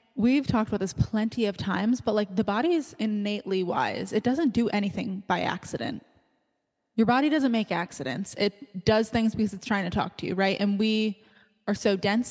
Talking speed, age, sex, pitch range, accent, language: 200 wpm, 10-29, female, 195-220 Hz, American, English